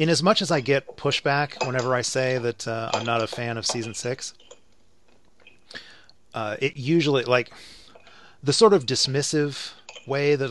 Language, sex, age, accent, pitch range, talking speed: English, male, 30-49, American, 110-135 Hz, 165 wpm